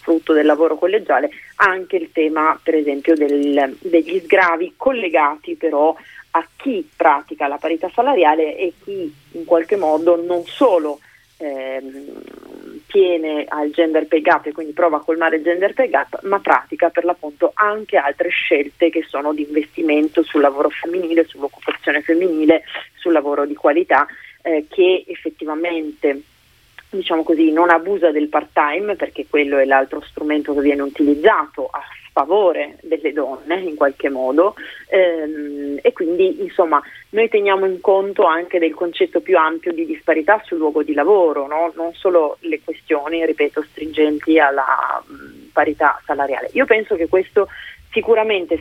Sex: female